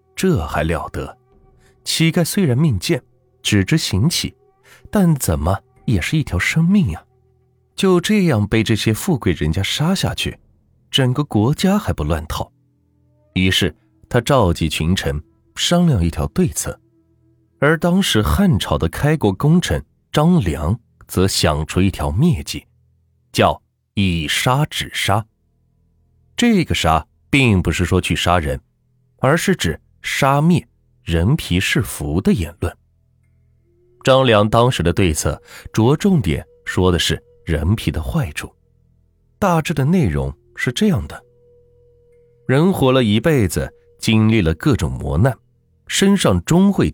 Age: 30-49